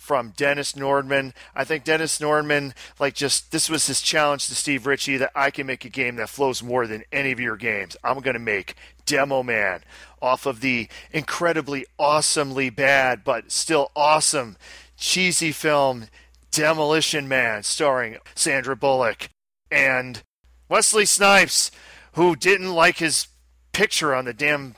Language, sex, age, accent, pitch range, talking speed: English, male, 40-59, American, 130-160 Hz, 150 wpm